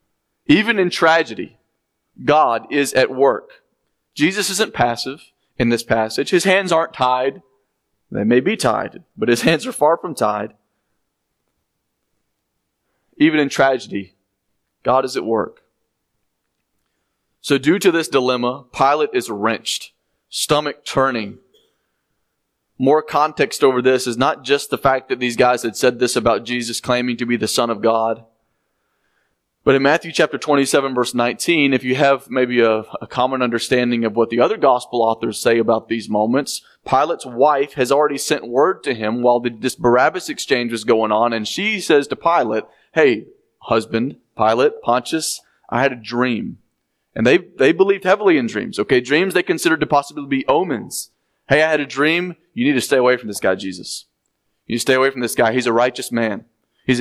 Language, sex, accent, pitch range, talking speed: English, male, American, 115-155 Hz, 175 wpm